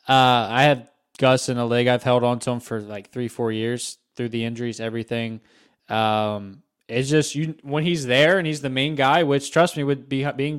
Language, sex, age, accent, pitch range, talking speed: English, male, 20-39, American, 120-150 Hz, 215 wpm